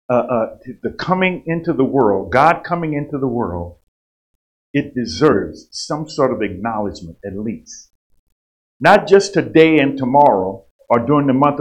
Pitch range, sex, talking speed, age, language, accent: 115-180 Hz, male, 150 wpm, 50-69, English, American